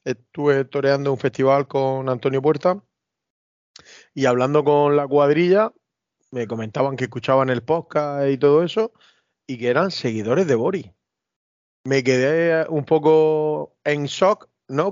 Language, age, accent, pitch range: Spanish, 30-49, Spanish, 135-170 Hz